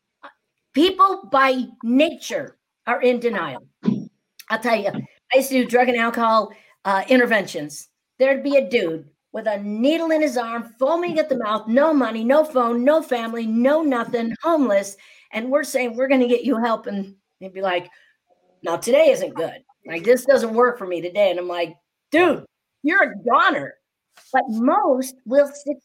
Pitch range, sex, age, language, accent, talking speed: 205-270 Hz, female, 50-69, English, American, 175 wpm